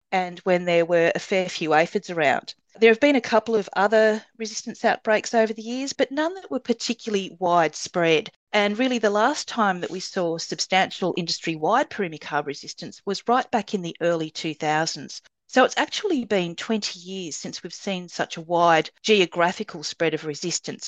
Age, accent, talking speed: 40-59, Australian, 180 wpm